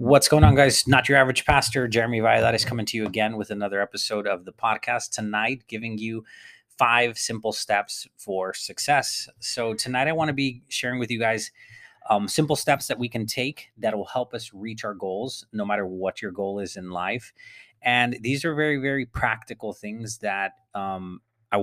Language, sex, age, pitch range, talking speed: English, male, 30-49, 100-120 Hz, 195 wpm